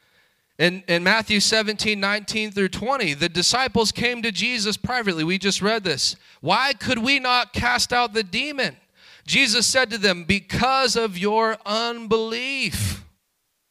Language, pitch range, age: English, 185-255 Hz, 40-59